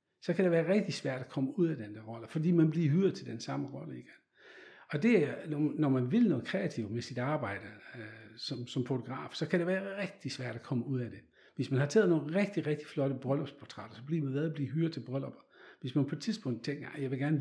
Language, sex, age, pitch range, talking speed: Danish, male, 60-79, 115-150 Hz, 260 wpm